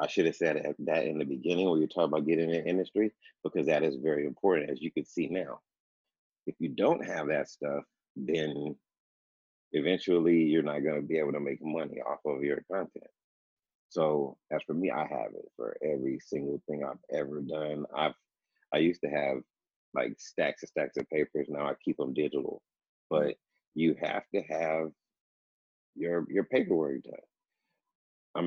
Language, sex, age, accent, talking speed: English, male, 30-49, American, 185 wpm